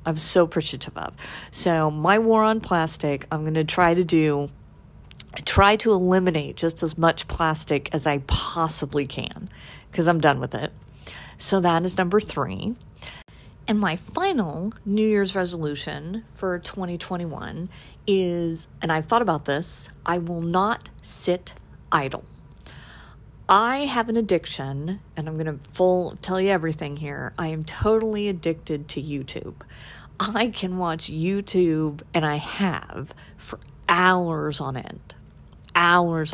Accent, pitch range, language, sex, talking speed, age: American, 150-185 Hz, English, female, 140 wpm, 50-69